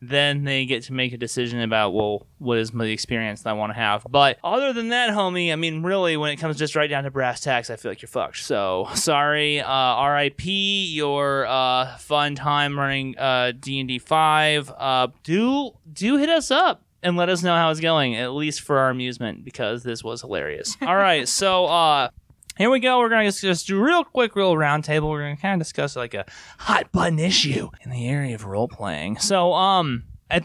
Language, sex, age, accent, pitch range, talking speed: English, male, 20-39, American, 115-165 Hz, 215 wpm